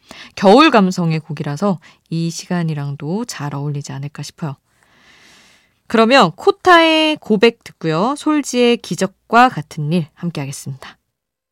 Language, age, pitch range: Korean, 20-39, 155-240 Hz